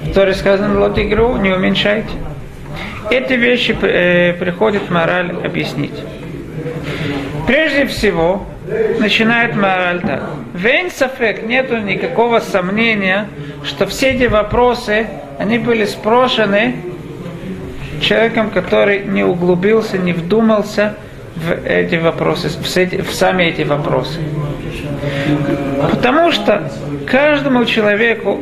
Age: 40-59